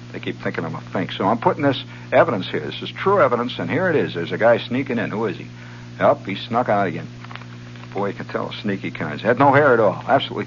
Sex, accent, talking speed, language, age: male, American, 265 wpm, English, 60-79